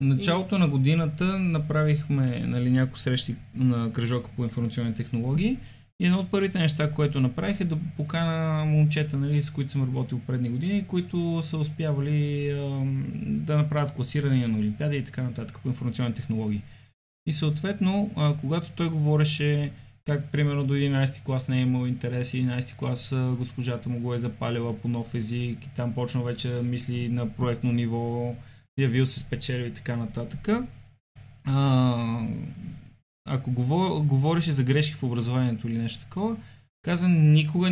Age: 20-39